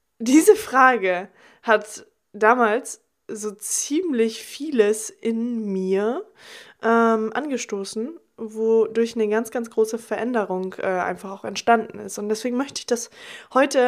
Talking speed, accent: 120 wpm, German